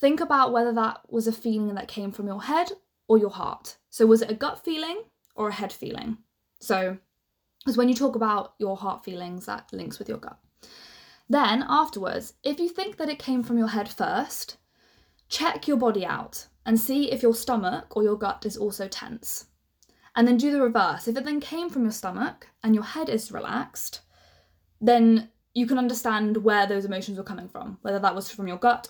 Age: 10-29